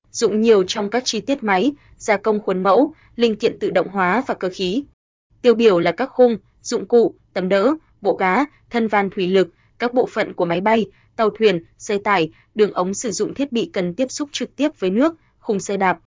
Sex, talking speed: female, 225 wpm